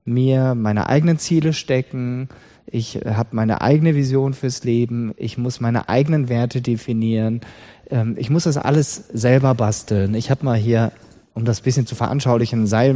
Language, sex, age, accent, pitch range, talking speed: German, male, 30-49, German, 115-145 Hz, 165 wpm